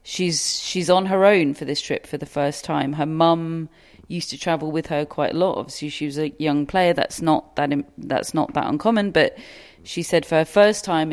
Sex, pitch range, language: female, 145-165 Hz, English